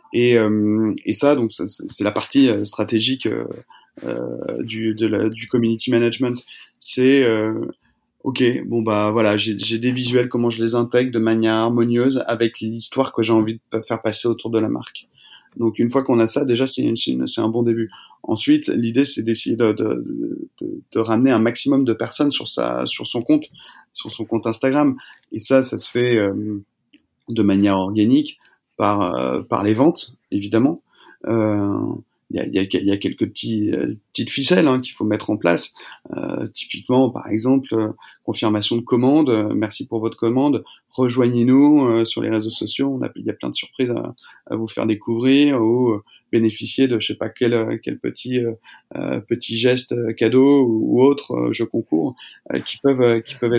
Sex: male